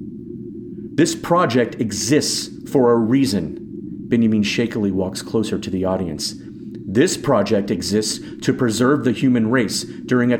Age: 40-59